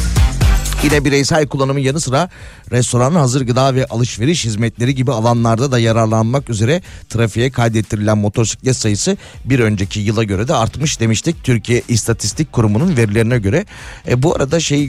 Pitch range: 110-135 Hz